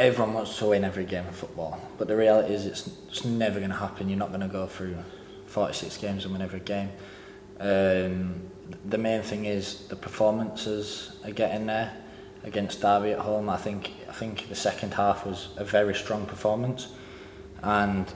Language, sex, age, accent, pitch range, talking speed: English, male, 20-39, British, 100-115 Hz, 190 wpm